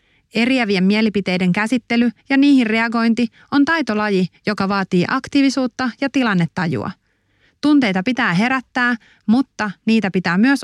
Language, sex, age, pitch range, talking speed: English, female, 30-49, 190-245 Hz, 115 wpm